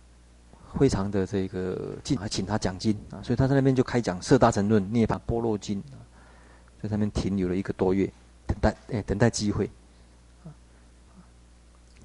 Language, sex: Chinese, male